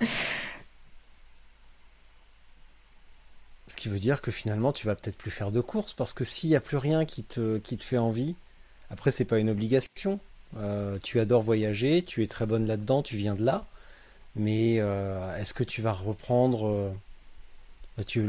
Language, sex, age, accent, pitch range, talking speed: French, male, 30-49, French, 105-130 Hz, 170 wpm